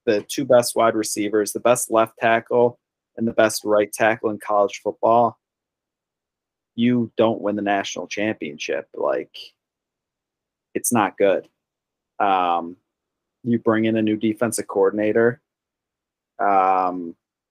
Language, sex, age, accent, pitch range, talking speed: English, male, 30-49, American, 100-120 Hz, 125 wpm